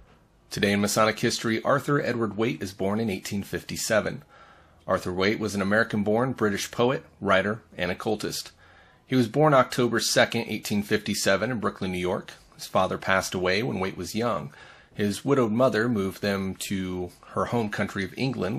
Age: 30-49